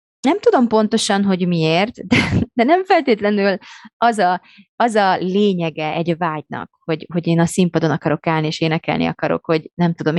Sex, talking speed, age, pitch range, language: female, 165 wpm, 20-39, 165-210 Hz, Hungarian